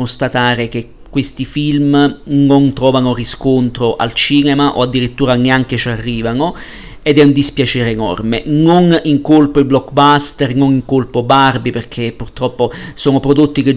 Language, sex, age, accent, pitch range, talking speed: Italian, male, 40-59, native, 120-140 Hz, 145 wpm